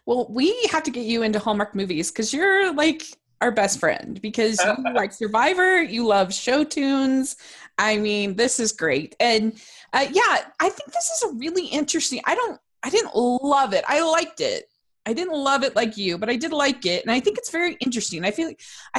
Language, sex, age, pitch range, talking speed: English, female, 20-39, 230-320 Hz, 210 wpm